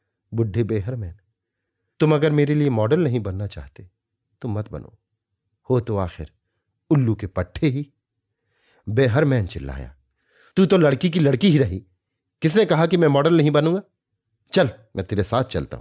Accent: native